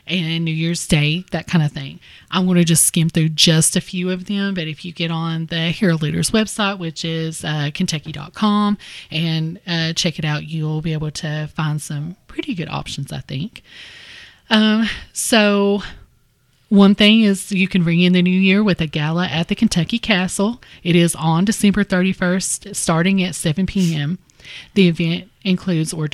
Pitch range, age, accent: 160-195 Hz, 30-49, American